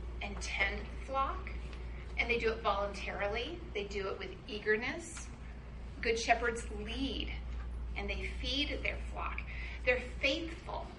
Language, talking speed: English, 125 wpm